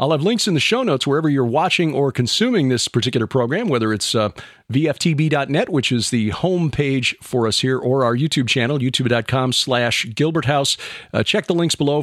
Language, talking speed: English, 190 wpm